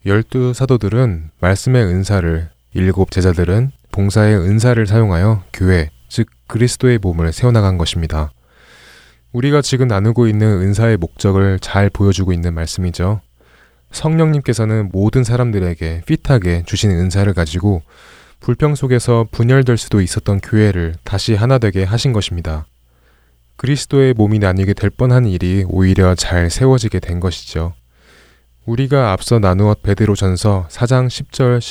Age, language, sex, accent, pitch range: 20-39, Korean, male, native, 85-120 Hz